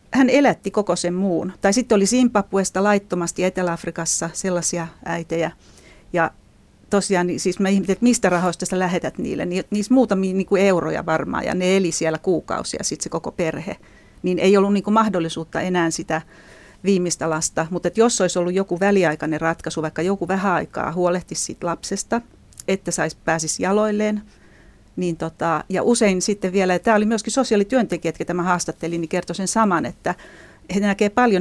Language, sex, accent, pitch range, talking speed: Finnish, female, native, 170-200 Hz, 155 wpm